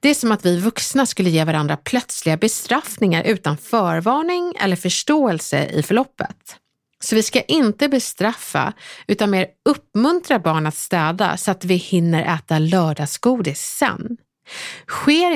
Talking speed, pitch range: 140 wpm, 165-245 Hz